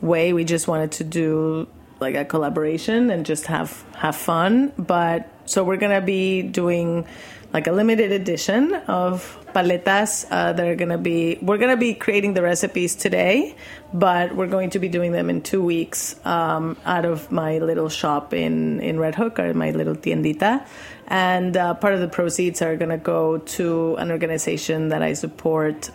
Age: 30-49